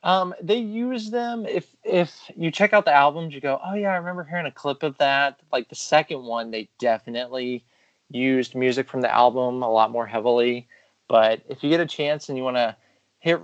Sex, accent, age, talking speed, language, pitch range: male, American, 20-39, 215 wpm, English, 120-145 Hz